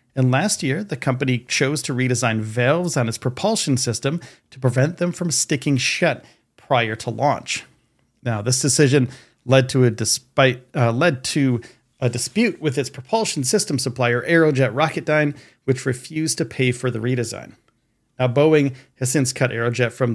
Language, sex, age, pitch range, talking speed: English, male, 40-59, 120-140 Hz, 165 wpm